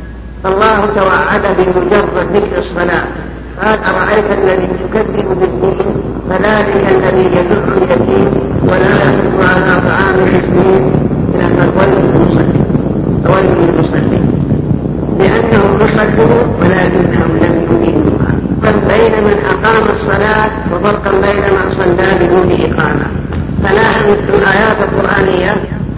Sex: female